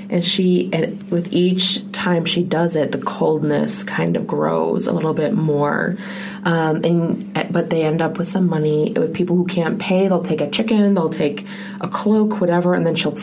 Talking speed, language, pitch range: 200 wpm, English, 160-200 Hz